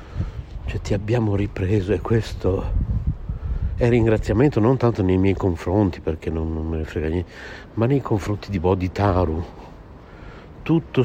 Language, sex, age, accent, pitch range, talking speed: Italian, male, 60-79, native, 95-120 Hz, 135 wpm